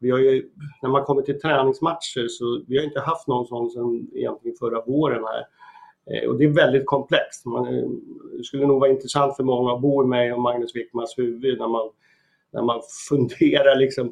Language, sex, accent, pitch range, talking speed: Swedish, male, native, 120-150 Hz, 195 wpm